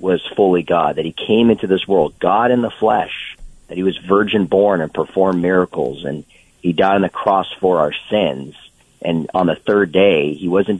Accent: American